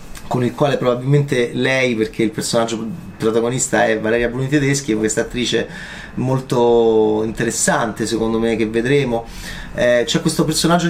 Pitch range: 125-160 Hz